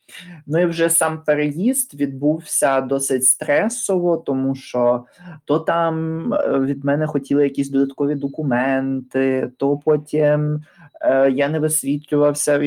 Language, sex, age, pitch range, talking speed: Ukrainian, male, 20-39, 125-150 Hz, 115 wpm